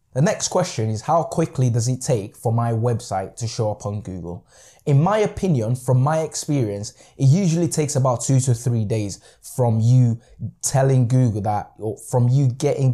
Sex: male